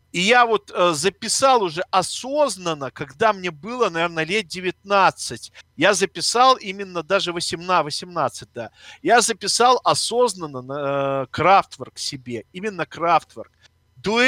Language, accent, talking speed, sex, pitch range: Russian, native, 120 wpm, male, 160-230 Hz